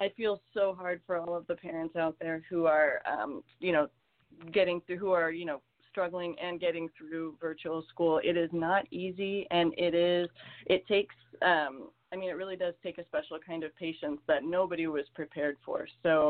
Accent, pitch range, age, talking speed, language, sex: American, 155-185 Hz, 30-49, 205 wpm, English, female